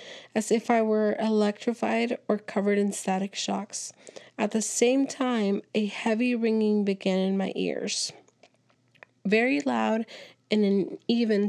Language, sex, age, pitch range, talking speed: English, female, 30-49, 205-240 Hz, 140 wpm